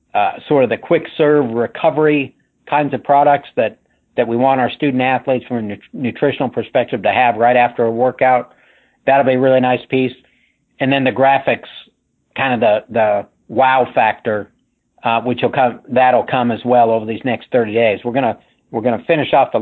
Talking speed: 195 wpm